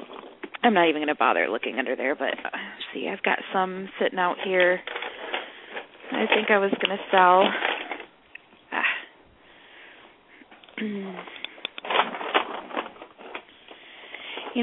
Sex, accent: female, American